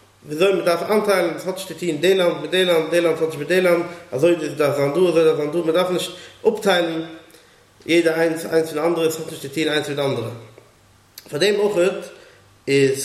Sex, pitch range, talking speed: male, 155-185 Hz, 185 wpm